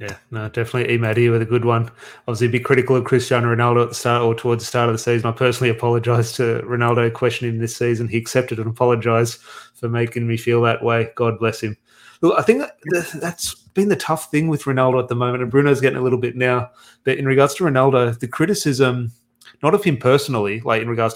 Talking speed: 230 wpm